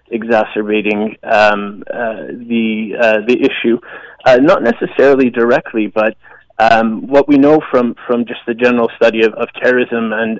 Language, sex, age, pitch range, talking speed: English, male, 30-49, 115-135 Hz, 150 wpm